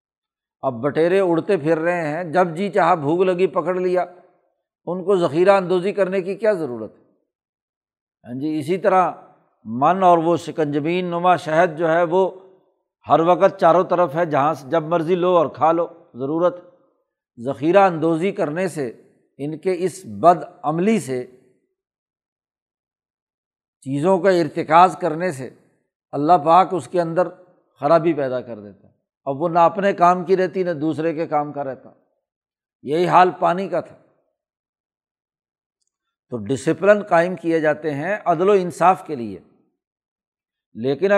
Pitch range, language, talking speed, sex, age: 155-185 Hz, Urdu, 150 wpm, male, 60-79